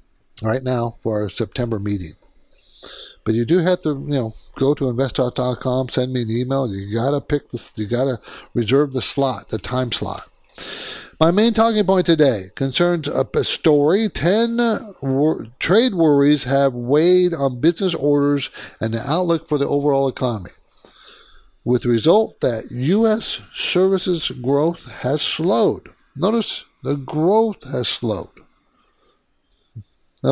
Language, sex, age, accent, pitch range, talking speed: English, male, 60-79, American, 120-170 Hz, 140 wpm